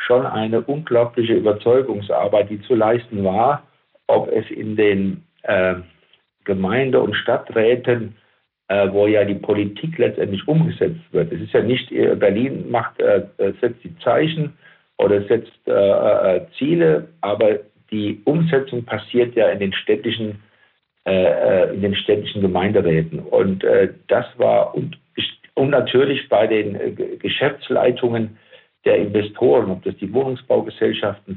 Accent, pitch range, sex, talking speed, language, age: German, 105-165 Hz, male, 130 wpm, German, 50-69